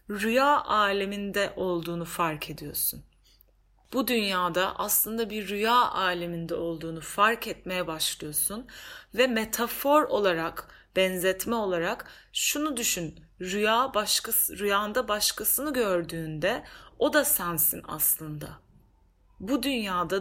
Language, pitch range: Turkish, 175-235 Hz